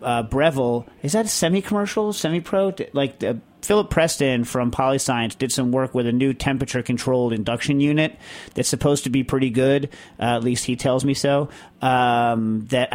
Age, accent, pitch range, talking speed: 40-59, American, 115-135 Hz, 170 wpm